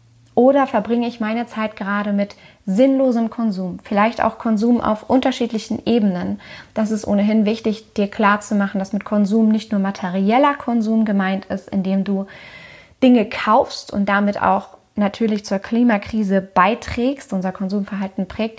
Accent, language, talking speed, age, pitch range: German, German, 140 wpm, 20-39, 200-235 Hz